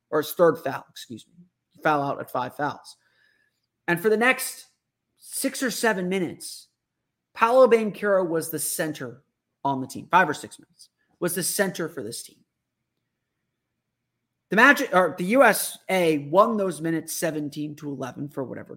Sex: male